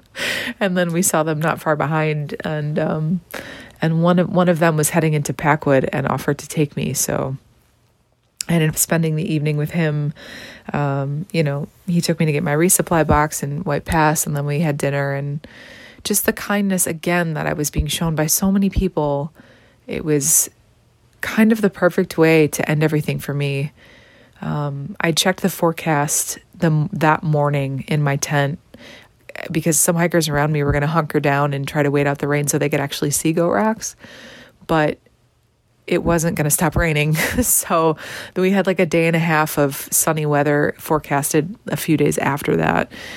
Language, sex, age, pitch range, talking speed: English, female, 30-49, 145-170 Hz, 195 wpm